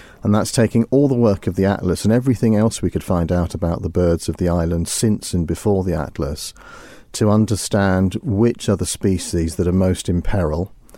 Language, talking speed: English, 210 wpm